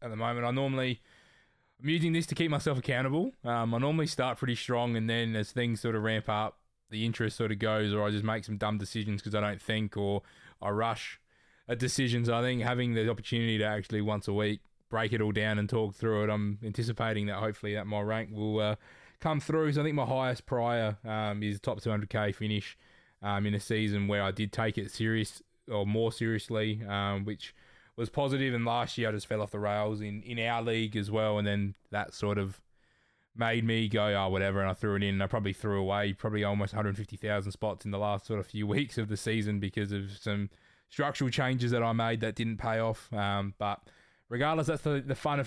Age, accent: 20-39, Australian